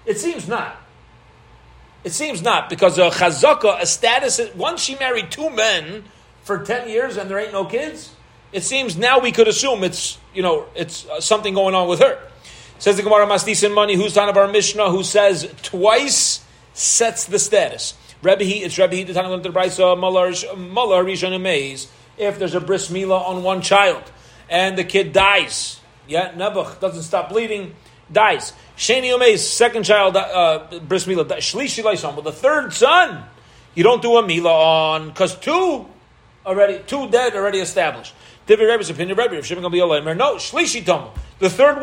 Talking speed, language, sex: 155 wpm, English, male